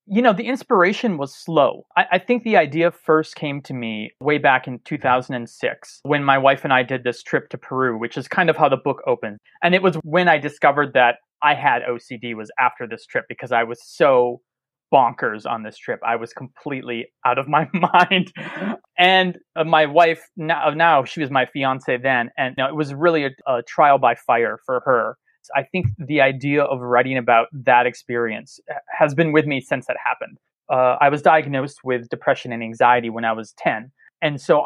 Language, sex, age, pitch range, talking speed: English, male, 30-49, 120-160 Hz, 205 wpm